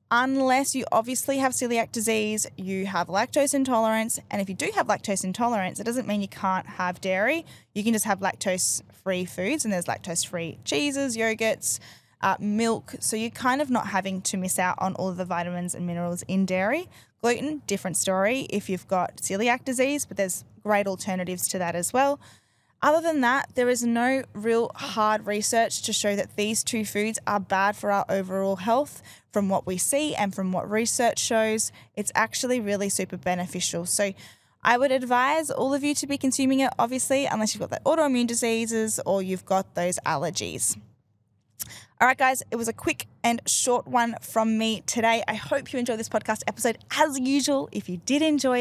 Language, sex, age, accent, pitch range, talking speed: English, female, 10-29, Australian, 190-250 Hz, 195 wpm